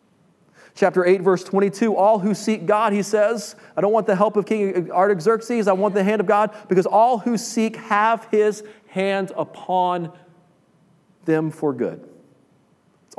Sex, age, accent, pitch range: male, 40-59, American, 160-210 Hz